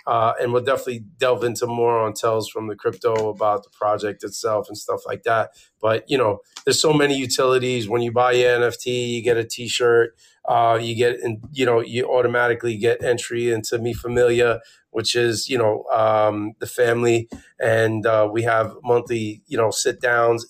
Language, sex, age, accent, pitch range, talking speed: English, male, 30-49, American, 115-125 Hz, 190 wpm